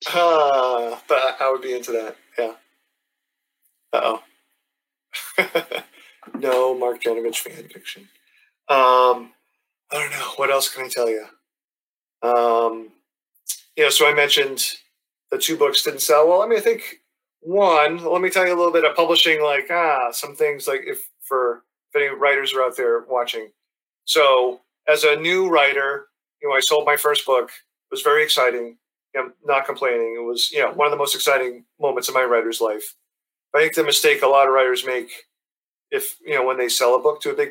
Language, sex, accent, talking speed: English, male, American, 185 wpm